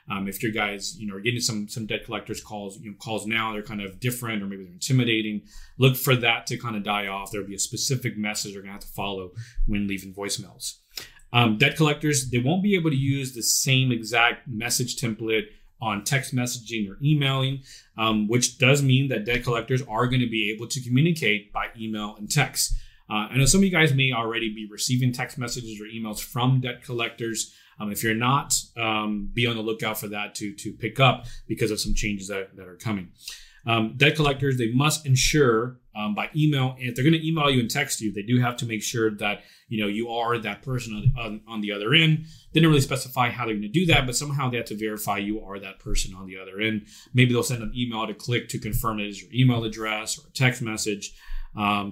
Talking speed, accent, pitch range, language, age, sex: 235 wpm, American, 105-125 Hz, English, 30-49, male